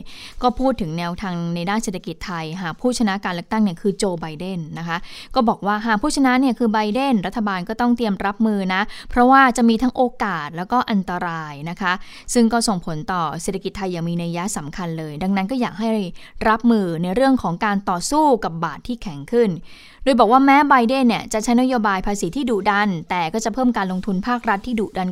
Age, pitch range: 20-39, 180-235 Hz